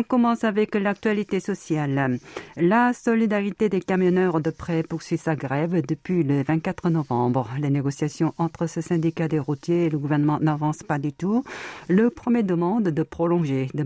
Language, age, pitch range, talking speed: French, 50-69, 140-175 Hz, 165 wpm